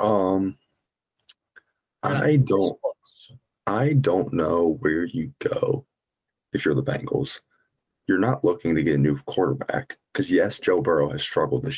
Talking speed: 145 wpm